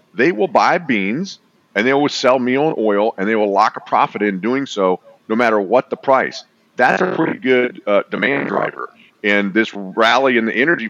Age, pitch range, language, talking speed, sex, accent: 40-59, 105-125 Hz, English, 210 wpm, male, American